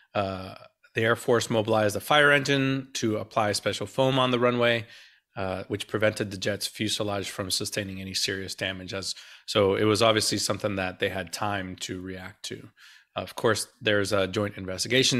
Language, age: English, 30-49